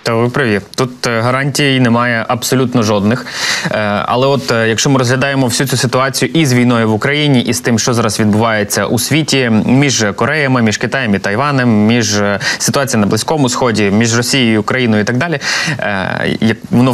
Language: Ukrainian